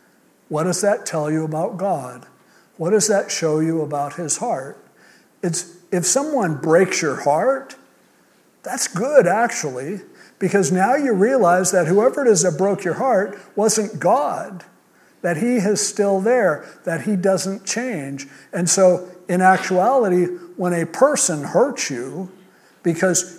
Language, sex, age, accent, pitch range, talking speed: English, male, 60-79, American, 155-200 Hz, 145 wpm